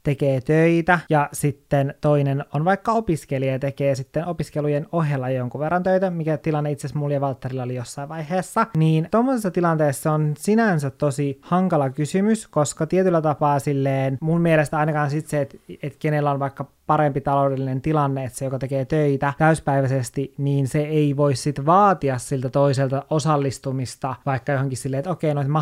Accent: native